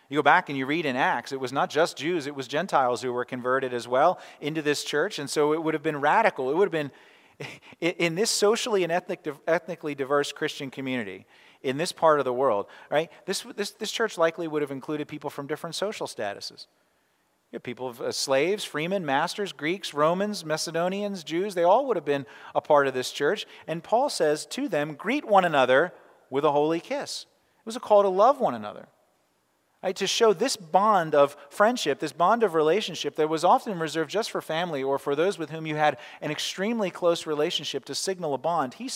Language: English